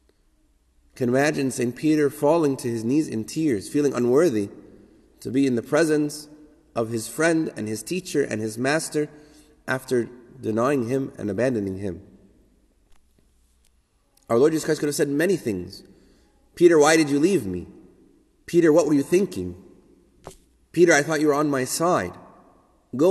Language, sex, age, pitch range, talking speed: English, male, 30-49, 110-155 Hz, 160 wpm